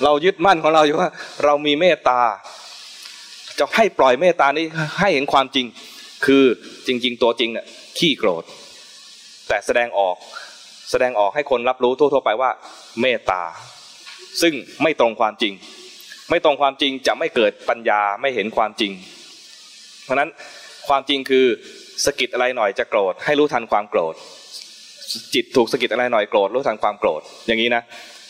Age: 20-39